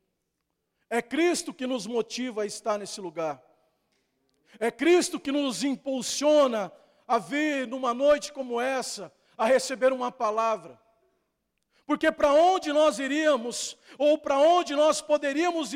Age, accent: 50-69, Brazilian